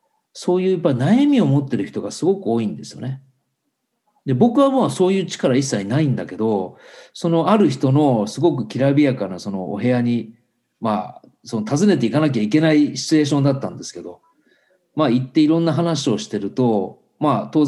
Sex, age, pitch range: male, 40-59, 120-195 Hz